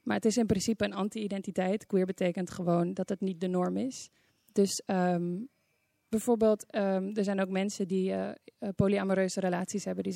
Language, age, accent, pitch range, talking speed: English, 20-39, Dutch, 185-215 Hz, 165 wpm